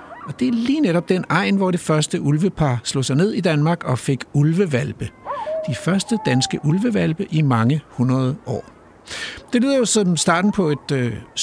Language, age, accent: Danish, 60-79, native